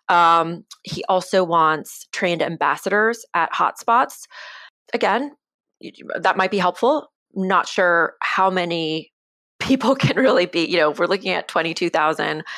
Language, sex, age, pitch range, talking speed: English, female, 30-49, 160-195 Hz, 130 wpm